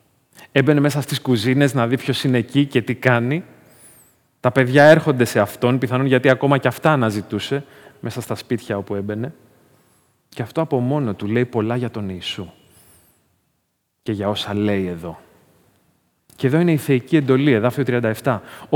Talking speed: 165 wpm